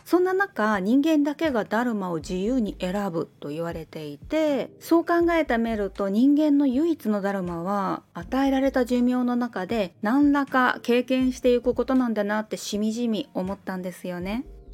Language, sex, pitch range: Japanese, female, 200-280 Hz